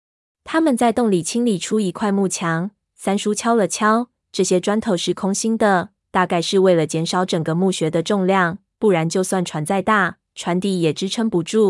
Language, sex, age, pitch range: Chinese, female, 20-39, 175-210 Hz